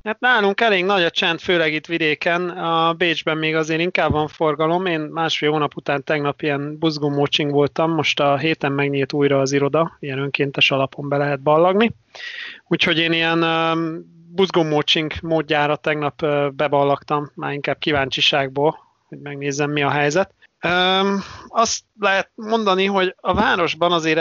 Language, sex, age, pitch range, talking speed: Hungarian, male, 30-49, 145-170 Hz, 145 wpm